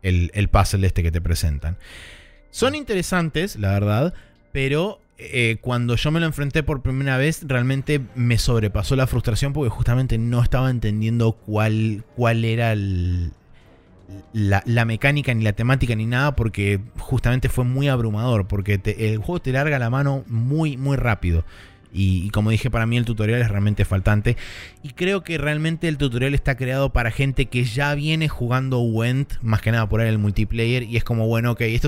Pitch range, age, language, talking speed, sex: 100-125 Hz, 20-39, Spanish, 180 wpm, male